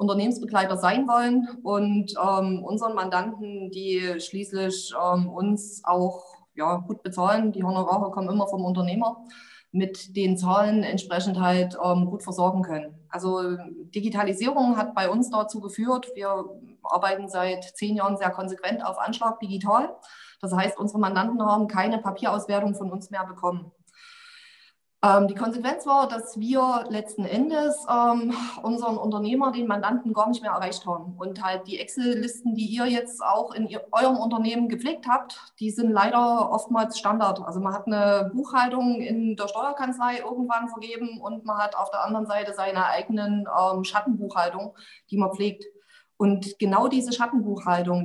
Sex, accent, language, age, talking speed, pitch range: female, German, German, 20-39, 145 wpm, 190-230 Hz